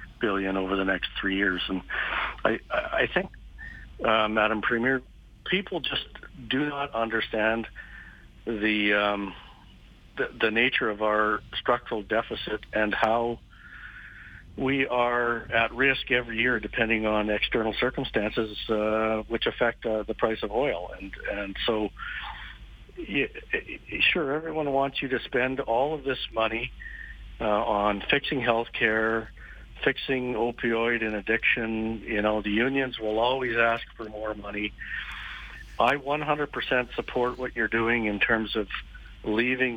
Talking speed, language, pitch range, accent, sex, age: 135 wpm, English, 110-125 Hz, American, male, 50-69